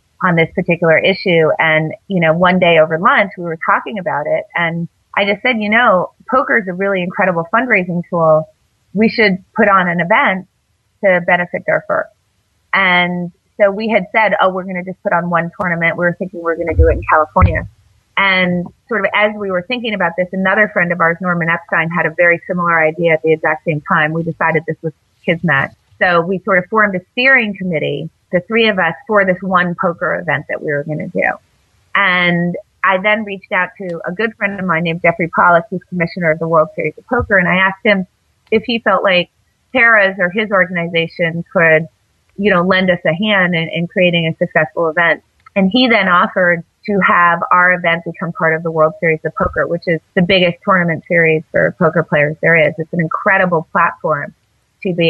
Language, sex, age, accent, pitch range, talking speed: English, female, 30-49, American, 165-195 Hz, 215 wpm